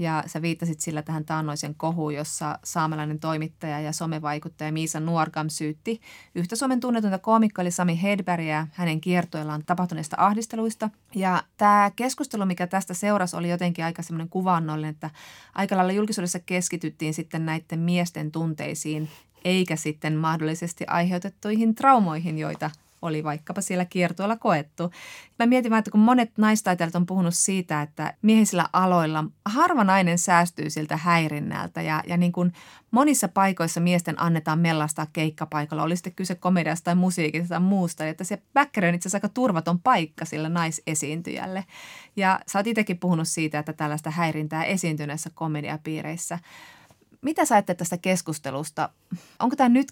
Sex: female